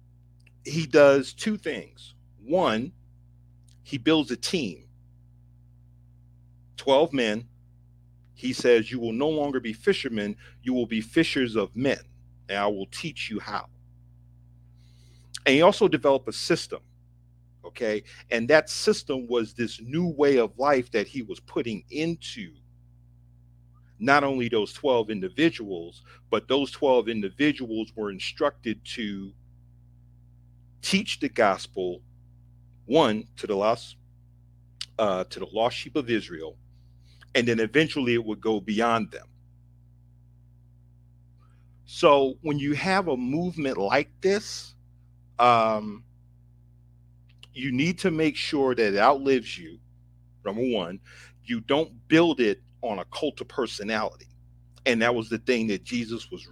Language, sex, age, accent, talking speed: English, male, 40-59, American, 130 wpm